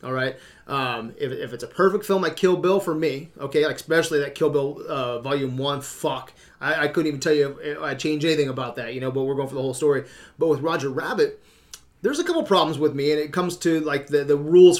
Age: 30-49